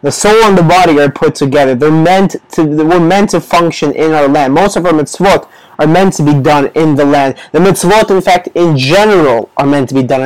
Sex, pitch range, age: male, 145-200 Hz, 20-39